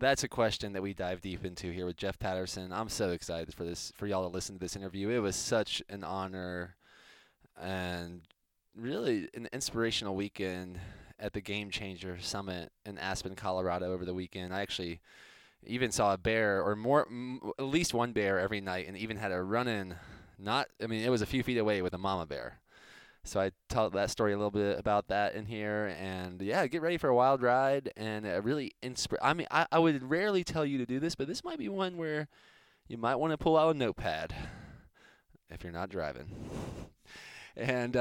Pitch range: 95-125 Hz